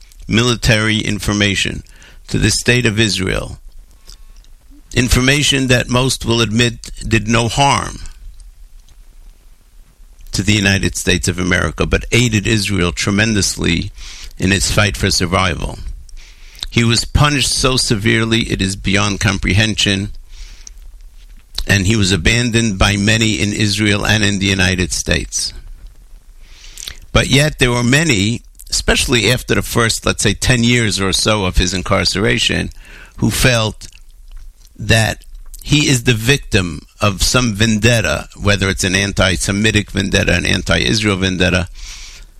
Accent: American